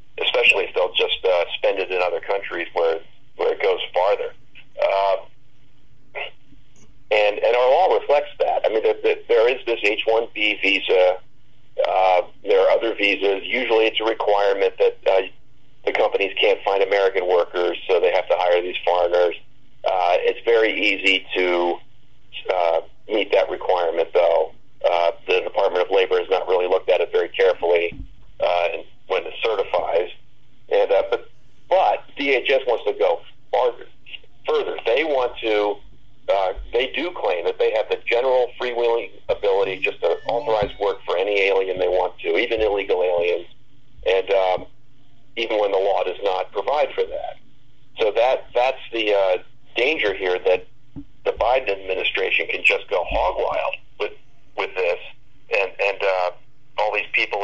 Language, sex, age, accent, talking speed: English, male, 40-59, American, 165 wpm